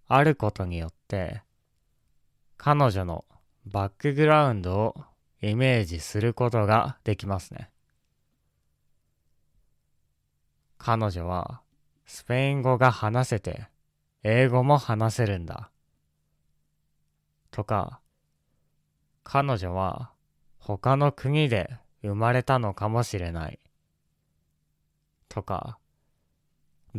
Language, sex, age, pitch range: Japanese, male, 20-39, 90-130 Hz